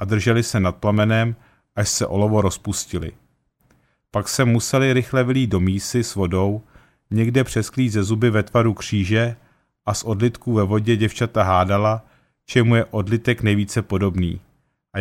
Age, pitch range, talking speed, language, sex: 40-59, 105-125 Hz, 150 wpm, Czech, male